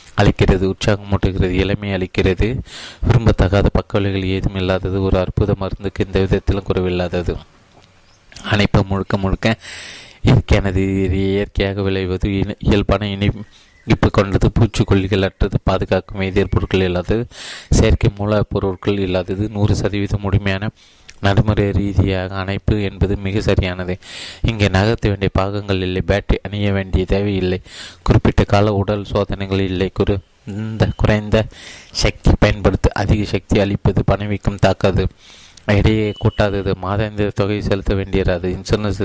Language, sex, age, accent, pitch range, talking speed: Tamil, male, 20-39, native, 95-105 Hz, 105 wpm